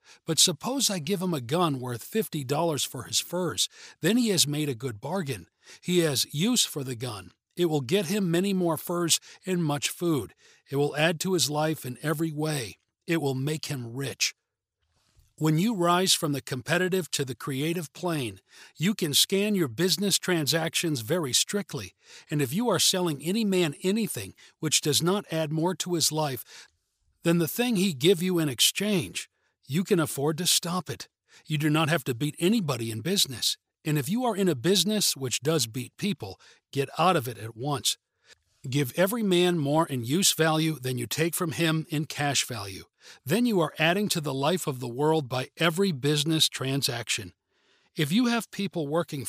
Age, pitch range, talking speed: 50-69, 140-180 Hz, 190 wpm